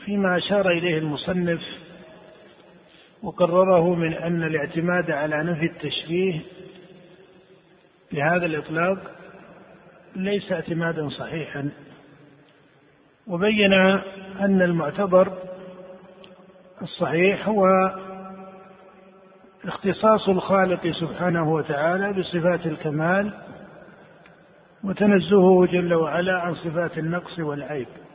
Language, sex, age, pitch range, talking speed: Arabic, male, 50-69, 170-195 Hz, 70 wpm